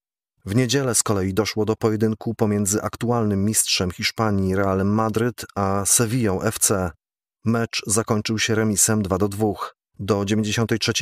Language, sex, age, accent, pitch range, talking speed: Polish, male, 30-49, native, 105-115 Hz, 130 wpm